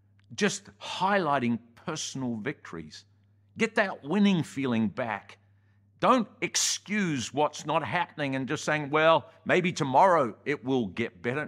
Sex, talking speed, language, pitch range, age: male, 125 wpm, English, 100-145 Hz, 50-69